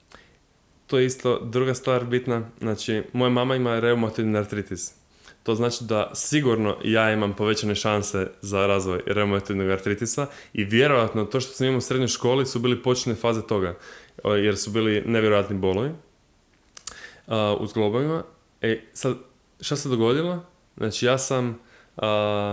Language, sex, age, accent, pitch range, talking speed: Croatian, male, 20-39, Serbian, 100-120 Hz, 145 wpm